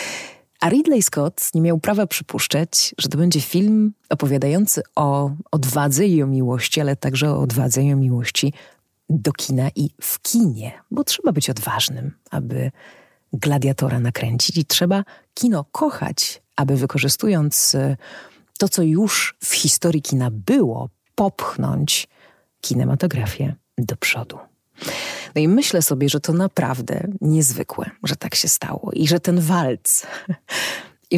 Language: Polish